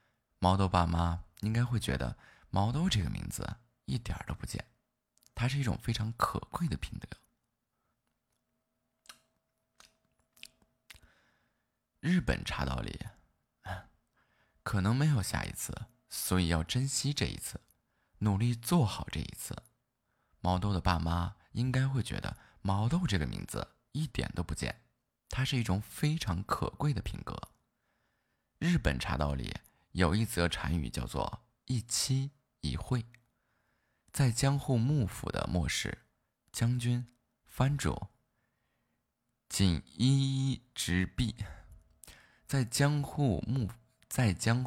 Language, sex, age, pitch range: Chinese, male, 20-39, 90-125 Hz